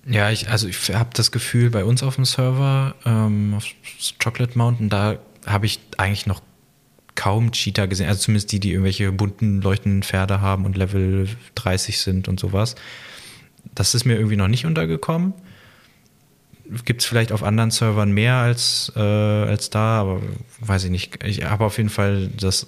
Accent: German